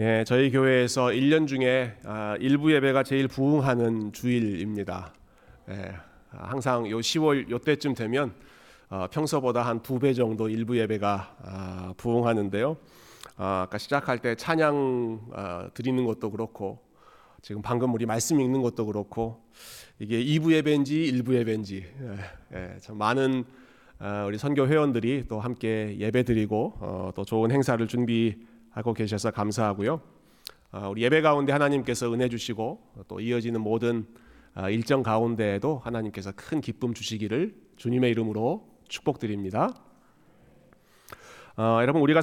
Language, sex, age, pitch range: Korean, male, 30-49, 105-135 Hz